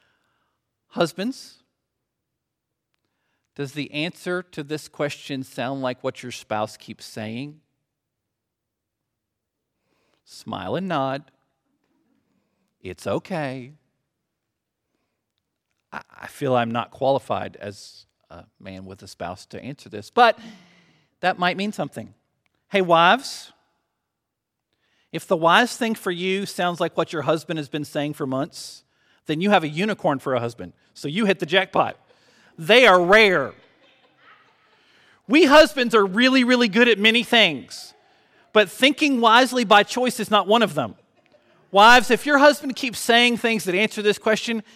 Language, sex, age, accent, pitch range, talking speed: English, male, 50-69, American, 135-210 Hz, 135 wpm